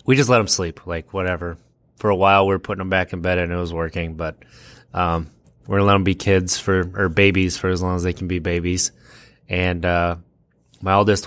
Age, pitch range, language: 20-39, 95-110 Hz, English